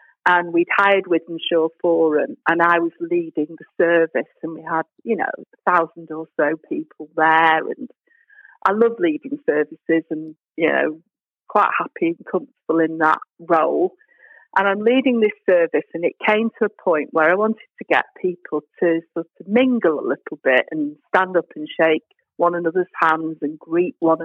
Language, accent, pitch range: English, British, 170-225 Hz